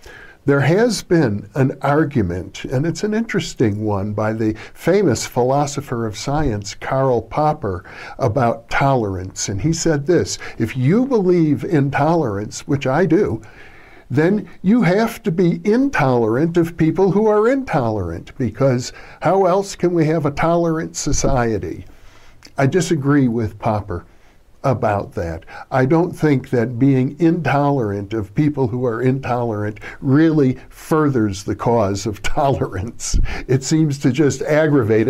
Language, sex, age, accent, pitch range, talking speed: English, male, 60-79, American, 115-165 Hz, 135 wpm